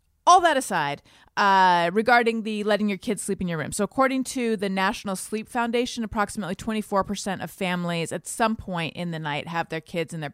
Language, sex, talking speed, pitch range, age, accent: English, female, 205 wpm, 165-215 Hz, 30-49, American